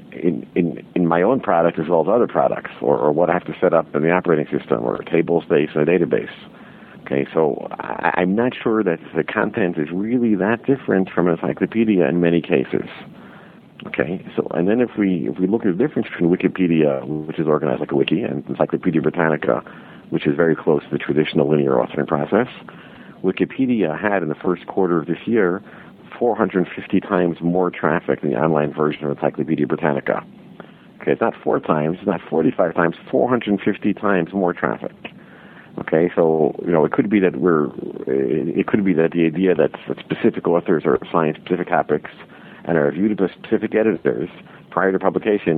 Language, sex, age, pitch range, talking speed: English, male, 50-69, 80-95 Hz, 195 wpm